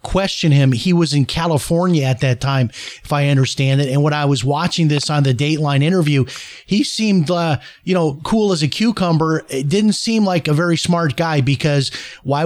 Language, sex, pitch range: English, male, 135-160 Hz